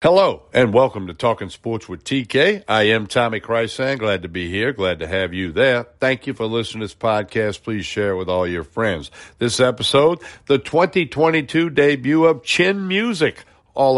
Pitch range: 95-125 Hz